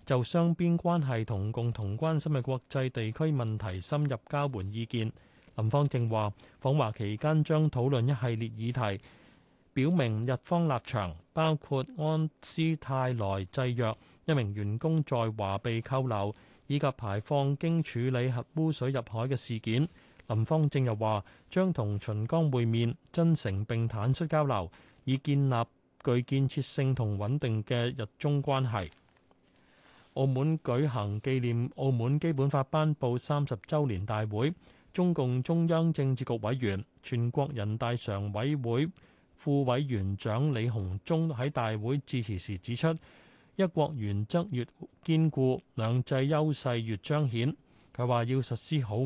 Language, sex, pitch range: Chinese, male, 115-145 Hz